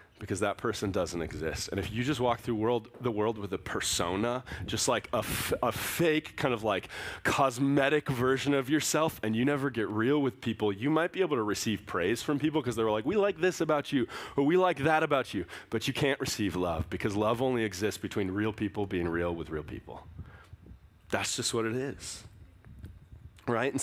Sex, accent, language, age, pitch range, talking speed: male, American, English, 30-49, 105-160 Hz, 205 wpm